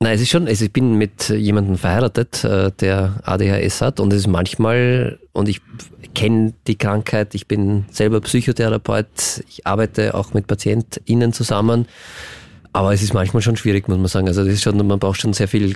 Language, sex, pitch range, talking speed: German, male, 95-115 Hz, 185 wpm